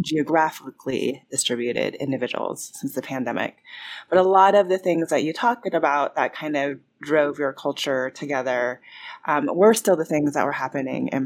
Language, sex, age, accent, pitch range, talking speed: English, female, 30-49, American, 140-185 Hz, 170 wpm